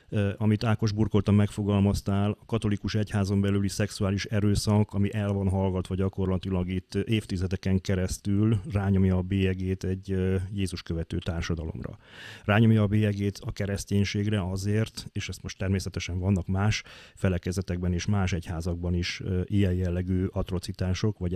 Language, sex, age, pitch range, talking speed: Hungarian, male, 30-49, 90-105 Hz, 130 wpm